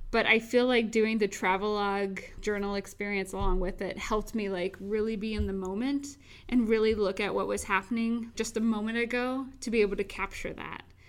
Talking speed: 200 wpm